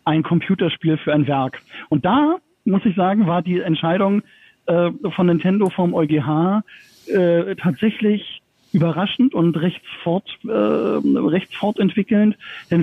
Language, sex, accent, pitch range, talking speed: German, male, German, 160-205 Hz, 125 wpm